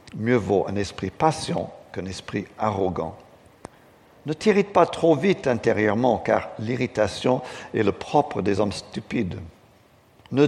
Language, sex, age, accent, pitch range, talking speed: French, male, 60-79, French, 100-145 Hz, 130 wpm